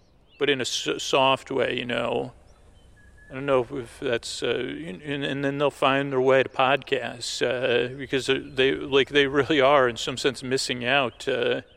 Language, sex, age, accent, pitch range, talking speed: English, male, 40-59, American, 125-140 Hz, 175 wpm